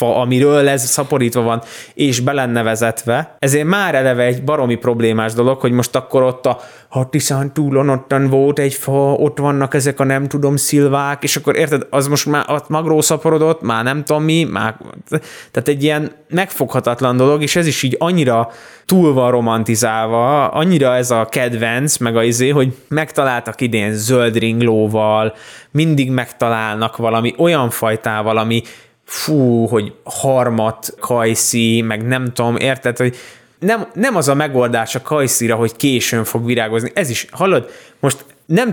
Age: 20-39